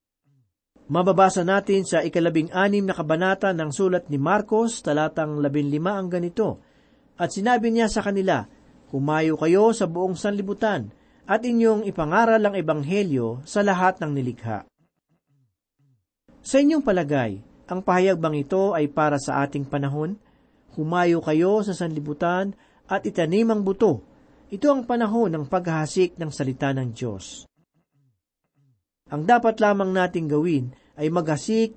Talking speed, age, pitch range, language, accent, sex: 130 wpm, 40-59, 145-200 Hz, Filipino, native, male